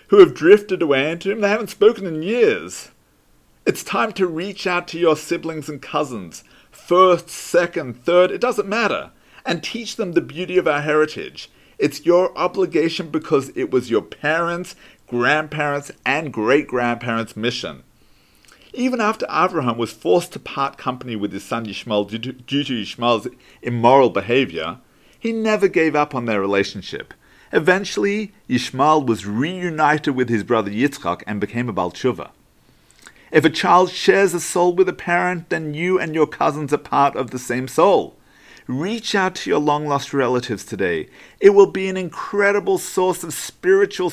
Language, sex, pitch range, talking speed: English, male, 130-185 Hz, 160 wpm